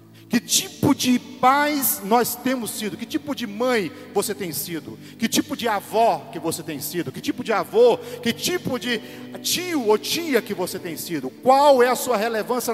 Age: 40-59